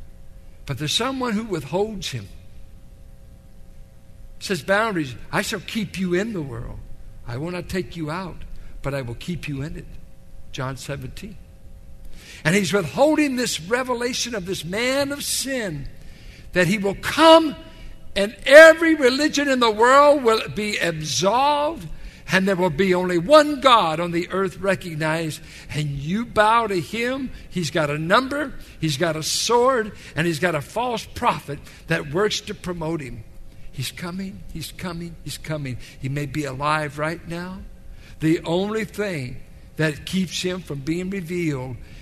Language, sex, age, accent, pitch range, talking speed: English, male, 60-79, American, 145-210 Hz, 155 wpm